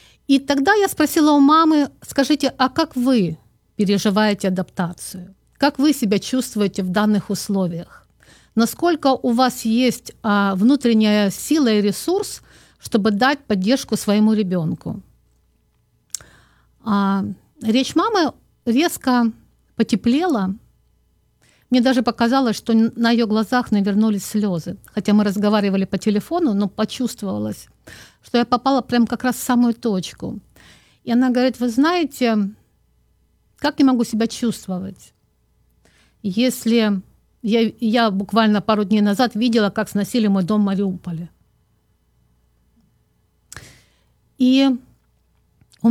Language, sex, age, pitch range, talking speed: Russian, female, 50-69, 200-255 Hz, 115 wpm